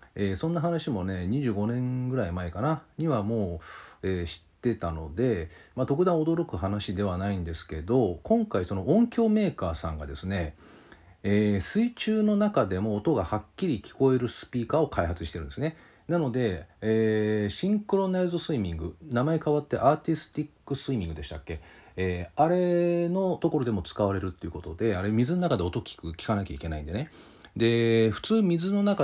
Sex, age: male, 40-59